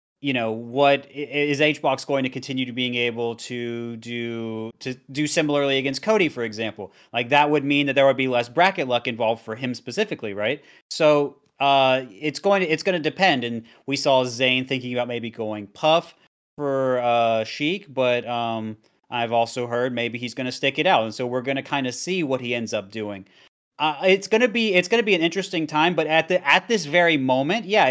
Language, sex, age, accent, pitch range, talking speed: English, male, 30-49, American, 120-145 Hz, 215 wpm